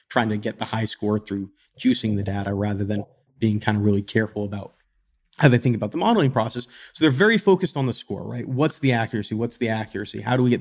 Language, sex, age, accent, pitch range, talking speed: English, male, 30-49, American, 110-130 Hz, 245 wpm